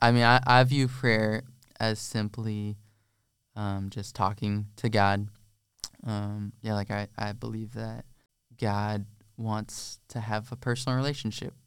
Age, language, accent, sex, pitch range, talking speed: 20-39, Czech, American, male, 105-120 Hz, 140 wpm